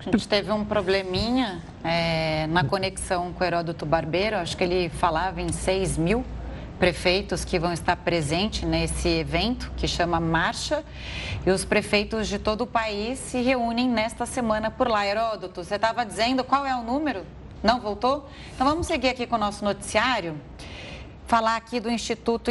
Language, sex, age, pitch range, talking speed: Portuguese, female, 30-49, 195-245 Hz, 170 wpm